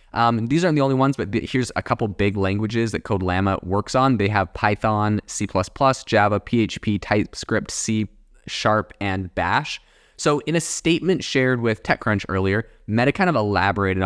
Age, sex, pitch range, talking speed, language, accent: 20-39, male, 100-120 Hz, 165 wpm, English, American